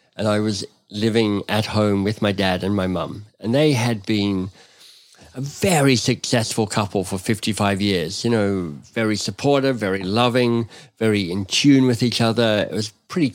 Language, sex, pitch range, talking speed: English, male, 100-115 Hz, 170 wpm